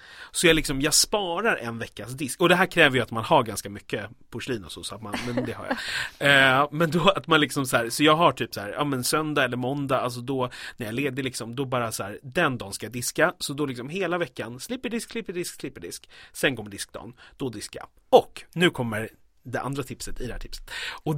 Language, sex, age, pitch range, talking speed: English, male, 30-49, 120-175 Hz, 255 wpm